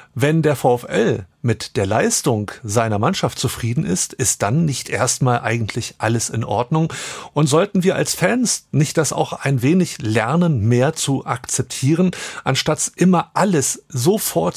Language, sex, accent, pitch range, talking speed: German, male, German, 125-175 Hz, 150 wpm